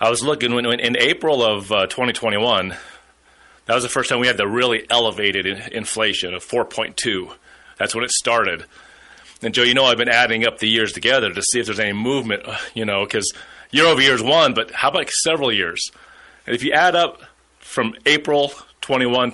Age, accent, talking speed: 30-49, American, 205 wpm